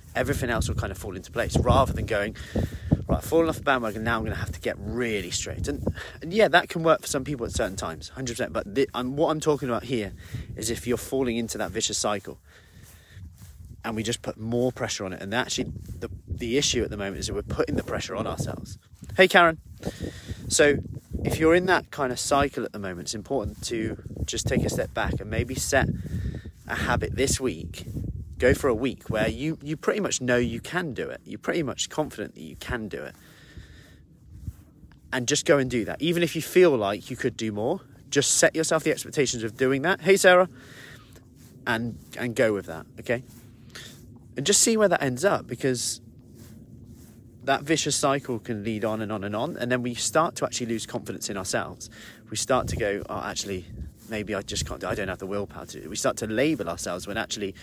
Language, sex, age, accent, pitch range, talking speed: English, male, 20-39, British, 105-135 Hz, 225 wpm